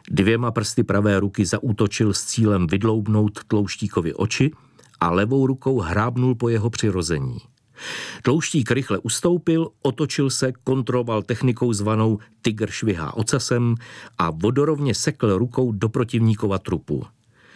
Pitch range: 100-120 Hz